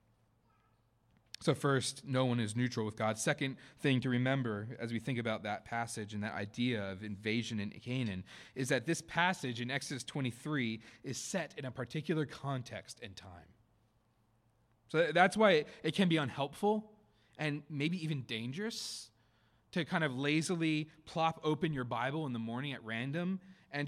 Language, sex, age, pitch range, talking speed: English, male, 20-39, 115-160 Hz, 165 wpm